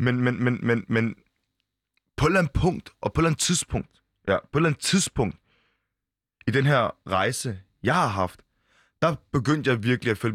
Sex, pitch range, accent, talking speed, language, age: male, 105-145 Hz, native, 180 wpm, Danish, 20-39